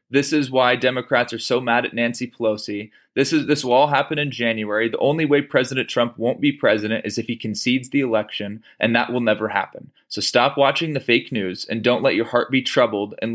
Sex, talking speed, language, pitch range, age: male, 230 wpm, English, 110-130 Hz, 20-39